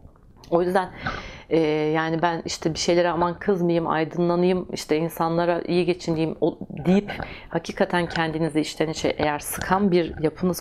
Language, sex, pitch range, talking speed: Turkish, female, 145-180 Hz, 130 wpm